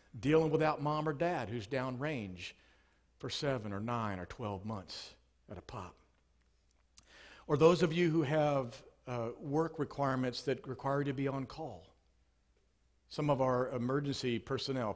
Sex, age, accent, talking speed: male, 50-69, American, 155 wpm